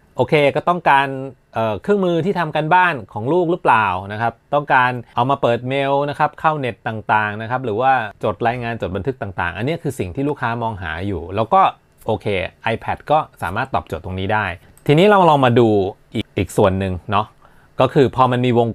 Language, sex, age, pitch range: Thai, male, 30-49, 105-145 Hz